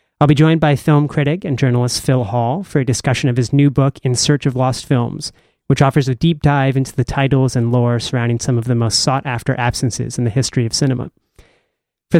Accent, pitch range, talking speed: American, 125-145 Hz, 220 wpm